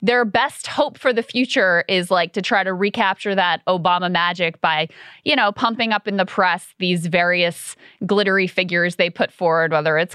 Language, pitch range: English, 170-215 Hz